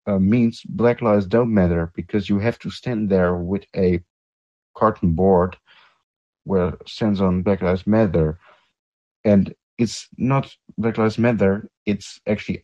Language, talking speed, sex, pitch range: English, 140 wpm, male, 90-110 Hz